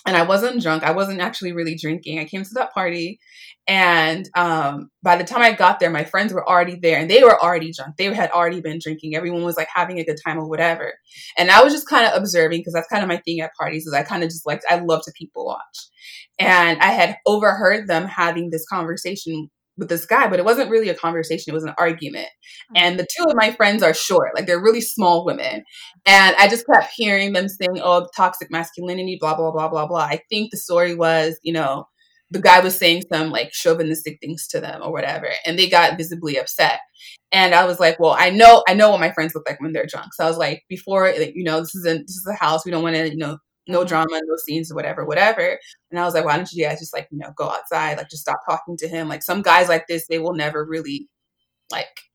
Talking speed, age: 250 wpm, 20-39